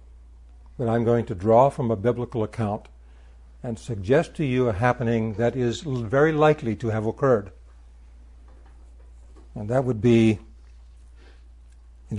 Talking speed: 135 wpm